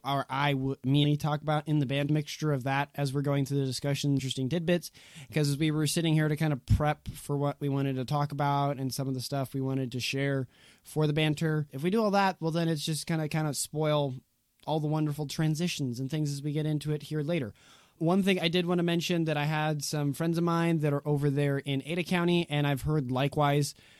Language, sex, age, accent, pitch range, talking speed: English, male, 20-39, American, 140-160 Hz, 250 wpm